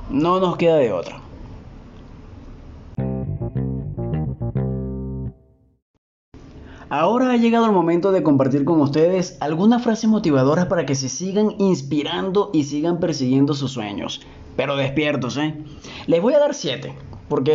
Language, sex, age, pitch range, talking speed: Spanish, male, 30-49, 130-185 Hz, 125 wpm